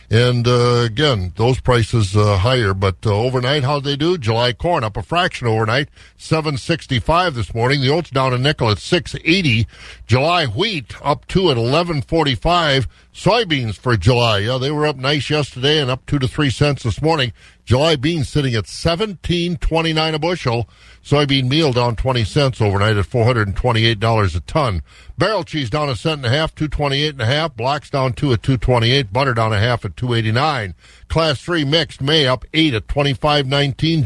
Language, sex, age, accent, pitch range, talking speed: English, male, 50-69, American, 115-150 Hz, 190 wpm